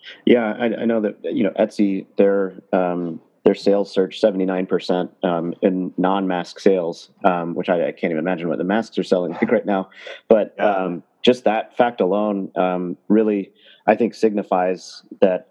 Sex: male